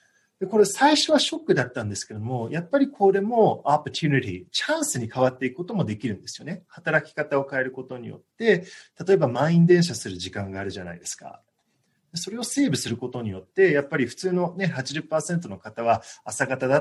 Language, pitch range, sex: Japanese, 120-185 Hz, male